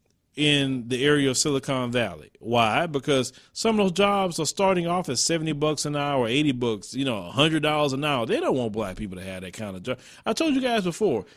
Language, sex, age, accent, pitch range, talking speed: English, male, 40-59, American, 130-200 Hz, 240 wpm